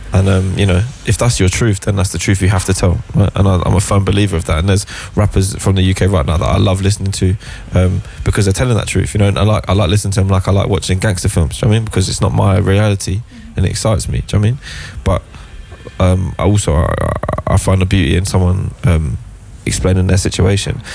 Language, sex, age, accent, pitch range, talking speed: Dutch, male, 20-39, British, 95-105 Hz, 275 wpm